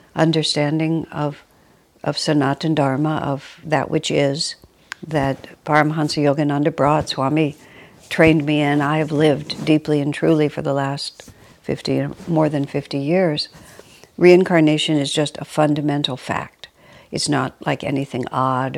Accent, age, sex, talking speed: American, 60-79, female, 135 wpm